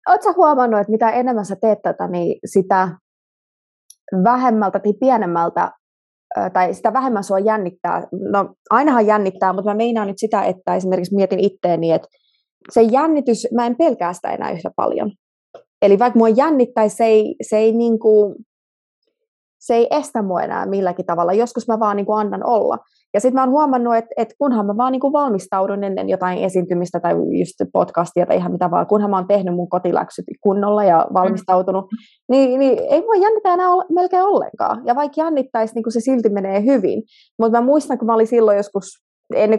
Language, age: Finnish, 20-39